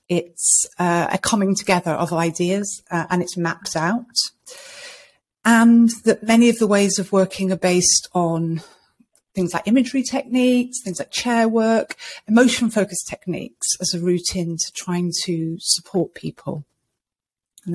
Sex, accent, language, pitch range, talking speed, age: female, British, English, 170-225 Hz, 145 wpm, 30-49